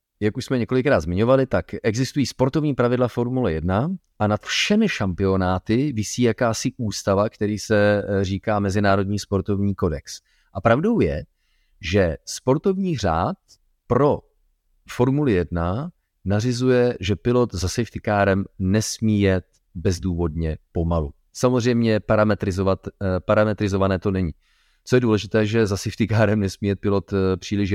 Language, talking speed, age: Czech, 130 wpm, 30-49